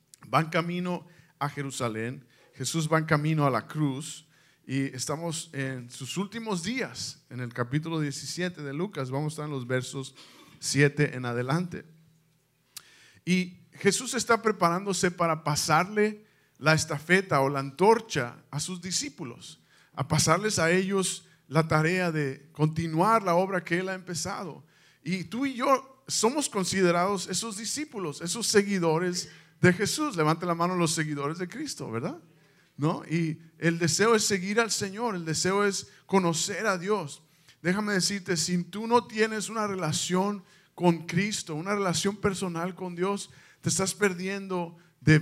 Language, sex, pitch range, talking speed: Spanish, male, 155-195 Hz, 150 wpm